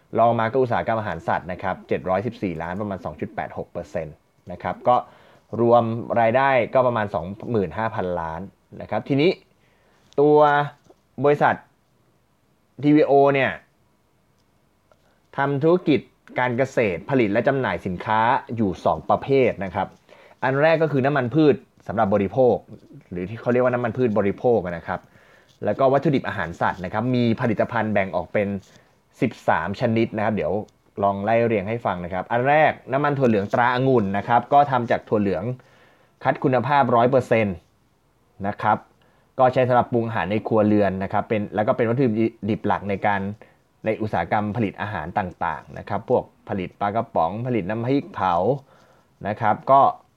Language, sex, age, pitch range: Thai, male, 20-39, 100-130 Hz